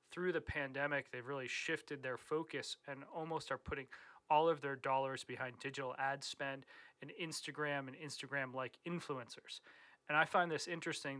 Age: 30-49